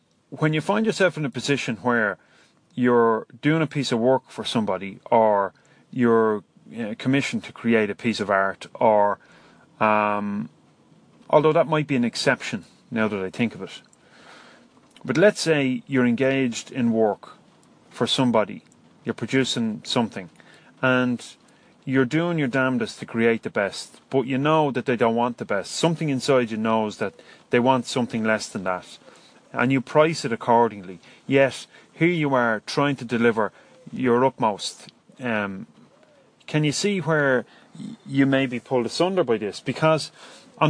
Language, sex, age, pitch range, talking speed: English, male, 30-49, 115-155 Hz, 160 wpm